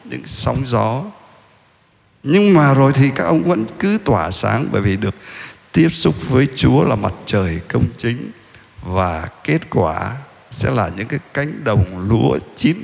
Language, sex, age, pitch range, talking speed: Vietnamese, male, 50-69, 105-165 Hz, 170 wpm